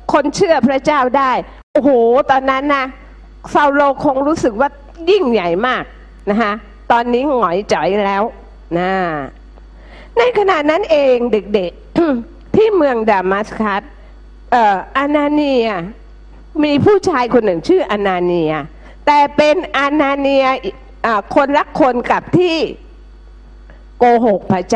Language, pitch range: Thai, 210-300 Hz